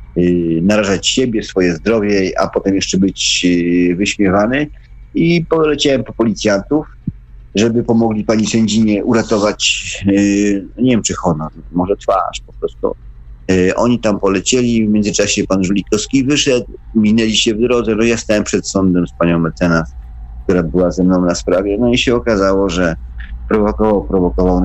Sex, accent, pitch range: male, native, 90-115 Hz